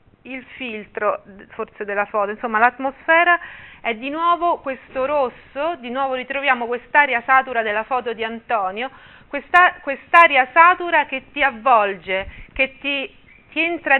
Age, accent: 40-59, native